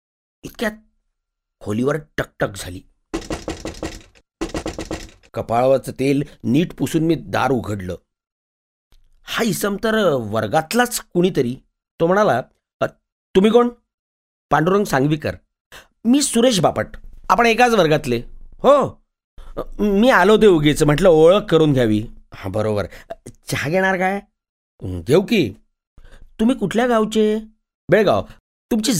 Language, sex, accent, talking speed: Marathi, male, native, 85 wpm